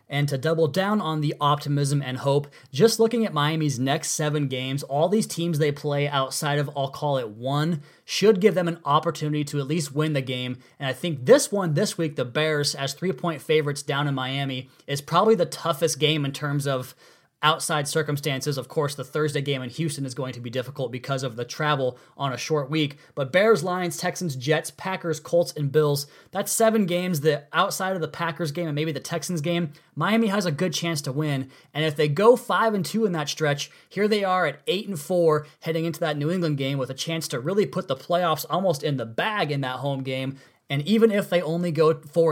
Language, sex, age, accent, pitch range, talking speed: English, male, 20-39, American, 135-170 Hz, 225 wpm